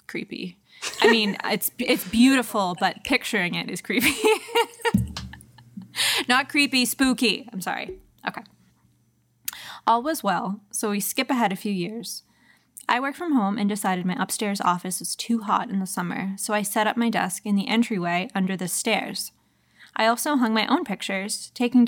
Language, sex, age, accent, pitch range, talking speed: English, female, 10-29, American, 190-240 Hz, 165 wpm